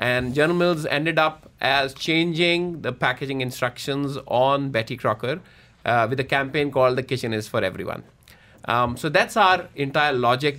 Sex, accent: male, Indian